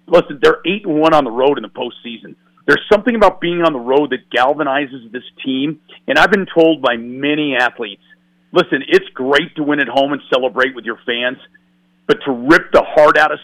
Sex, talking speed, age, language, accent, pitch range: male, 205 wpm, 40-59, English, American, 130-175 Hz